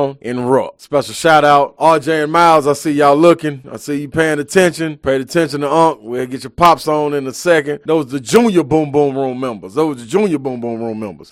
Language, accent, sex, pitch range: English, American, male, 135-175 Hz